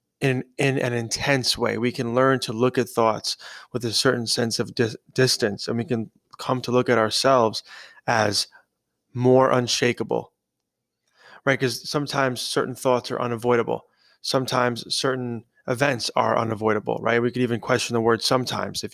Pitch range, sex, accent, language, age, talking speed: 115-130 Hz, male, American, English, 20-39, 160 wpm